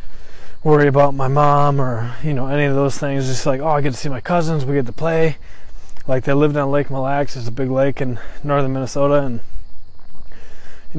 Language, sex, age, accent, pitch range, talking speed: English, male, 20-39, American, 120-145 Hz, 220 wpm